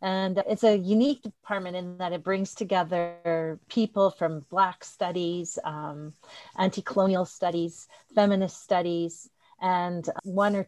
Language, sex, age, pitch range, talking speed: English, female, 40-59, 165-205 Hz, 125 wpm